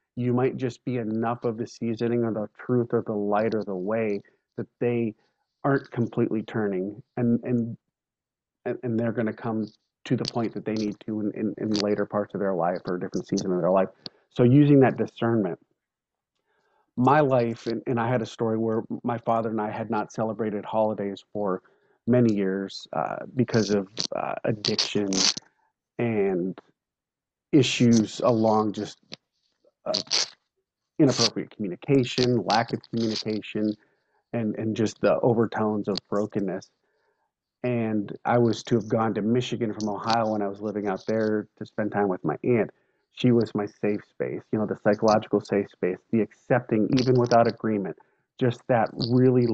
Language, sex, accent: English, male, American